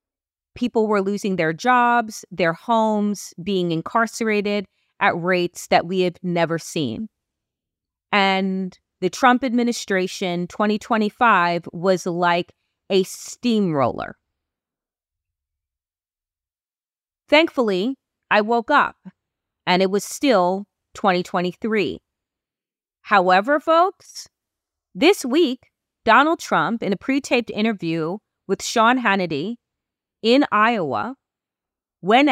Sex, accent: female, American